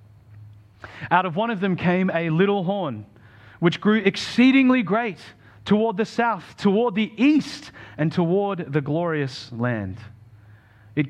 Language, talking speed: English, 135 wpm